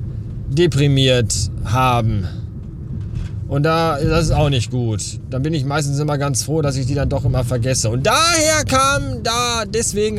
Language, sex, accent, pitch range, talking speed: German, male, German, 115-185 Hz, 165 wpm